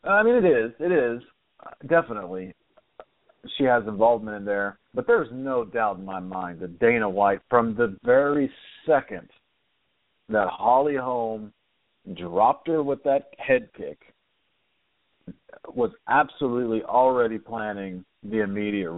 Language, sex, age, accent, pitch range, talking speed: English, male, 50-69, American, 105-135 Hz, 130 wpm